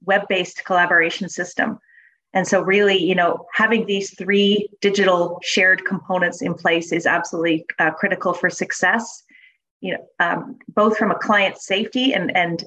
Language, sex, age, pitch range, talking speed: English, female, 30-49, 175-205 Hz, 150 wpm